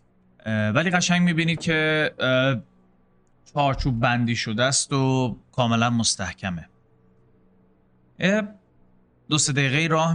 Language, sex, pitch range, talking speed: Persian, male, 110-155 Hz, 90 wpm